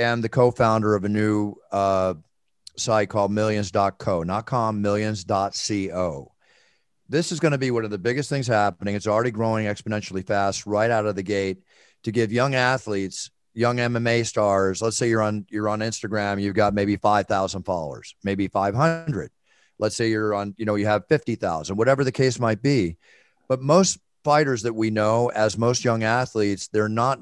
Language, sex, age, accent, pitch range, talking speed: English, male, 40-59, American, 100-120 Hz, 180 wpm